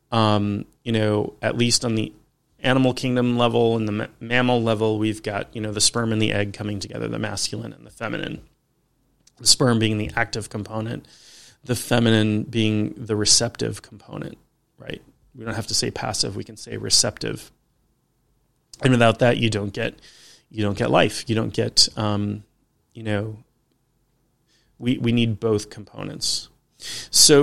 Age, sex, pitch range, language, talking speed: 30-49, male, 110-125 Hz, English, 165 wpm